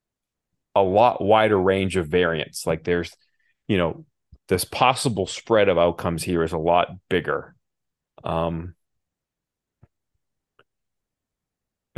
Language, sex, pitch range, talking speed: English, male, 90-115 Hz, 110 wpm